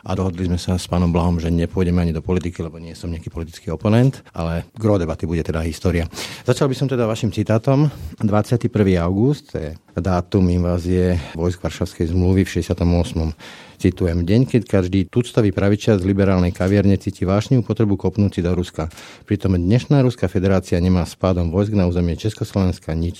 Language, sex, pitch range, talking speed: Slovak, male, 90-105 Hz, 170 wpm